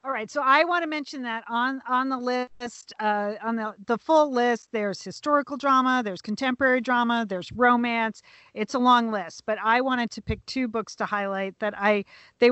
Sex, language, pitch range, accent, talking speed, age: female, English, 205-240 Hz, American, 200 wpm, 40-59